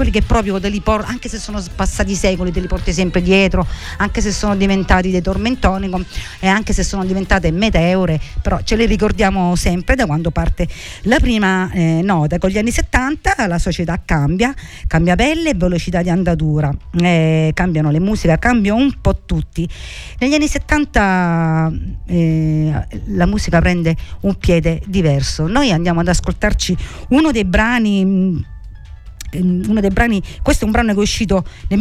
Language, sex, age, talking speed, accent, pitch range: Italian, female, 50-69, 160 wpm, native, 165-210 Hz